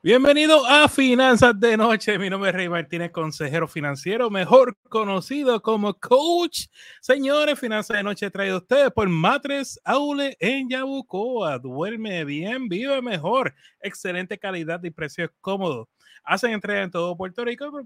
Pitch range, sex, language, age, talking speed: 185-240 Hz, male, Spanish, 30-49, 145 wpm